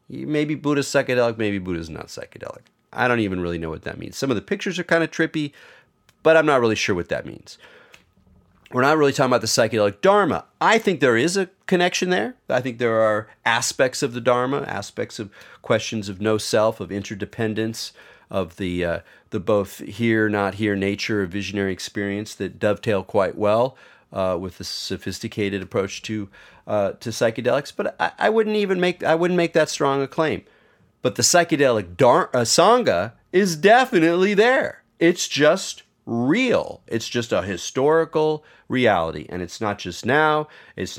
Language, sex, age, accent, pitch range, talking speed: English, male, 40-59, American, 100-155 Hz, 180 wpm